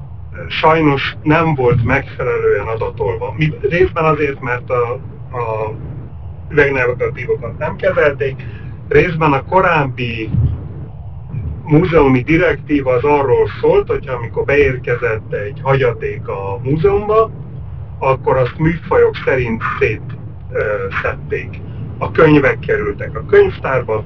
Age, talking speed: 30-49, 95 wpm